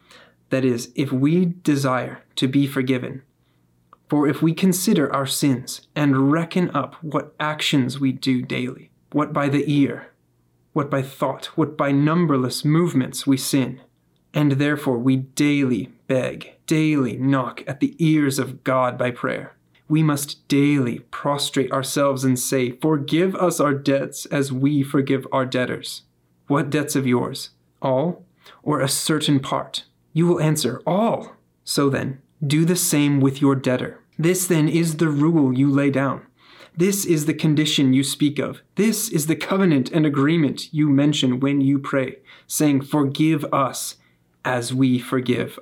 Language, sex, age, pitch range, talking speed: English, male, 30-49, 125-155 Hz, 155 wpm